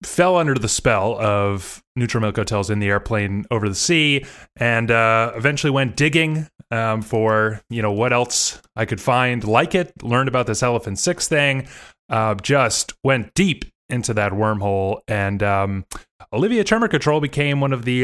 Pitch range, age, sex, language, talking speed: 110-135 Hz, 20-39, male, English, 175 wpm